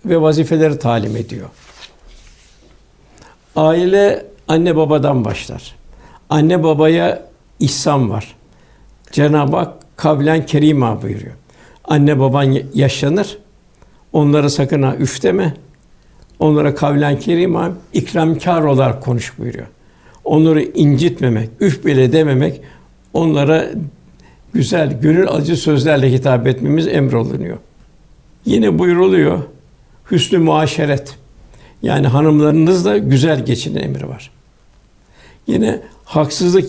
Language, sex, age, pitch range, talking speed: Turkish, male, 60-79, 135-165 Hz, 95 wpm